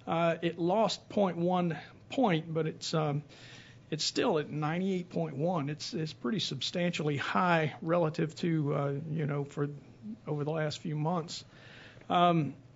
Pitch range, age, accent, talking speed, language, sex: 145-175 Hz, 50-69, American, 135 wpm, English, male